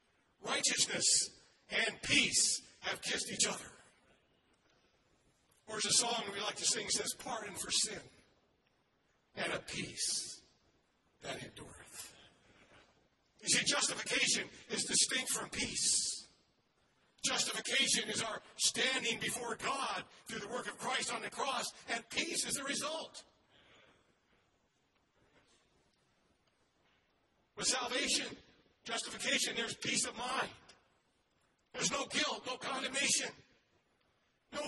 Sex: male